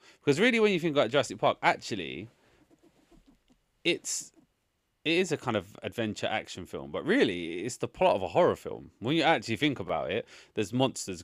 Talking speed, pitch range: 190 wpm, 90-130 Hz